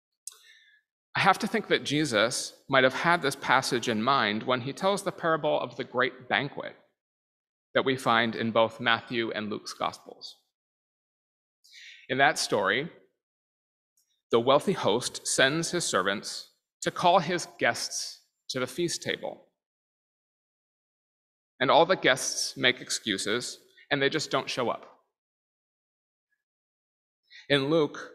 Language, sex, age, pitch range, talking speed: English, male, 30-49, 125-175 Hz, 130 wpm